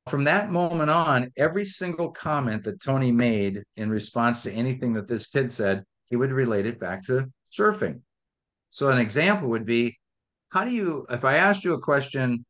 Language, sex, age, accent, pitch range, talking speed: English, male, 50-69, American, 115-150 Hz, 185 wpm